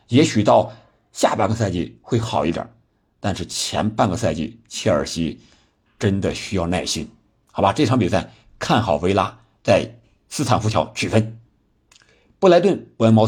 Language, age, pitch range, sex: Chinese, 50-69, 95-115 Hz, male